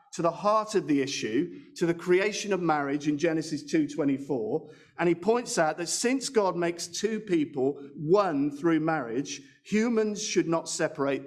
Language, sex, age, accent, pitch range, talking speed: English, male, 50-69, British, 140-205 Hz, 165 wpm